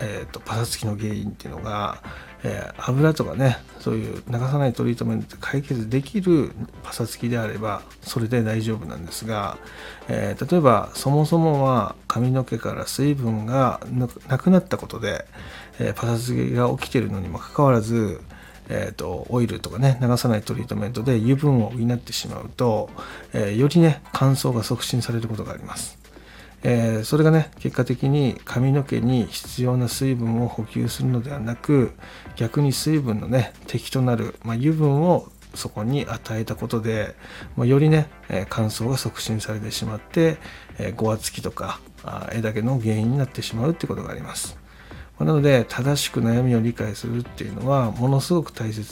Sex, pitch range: male, 110-135 Hz